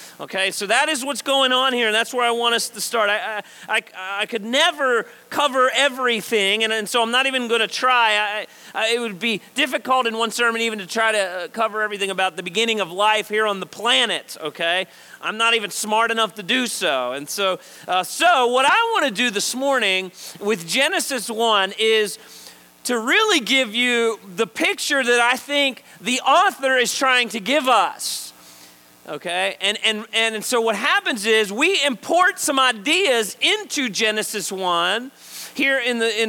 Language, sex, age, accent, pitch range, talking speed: English, male, 40-59, American, 195-255 Hz, 190 wpm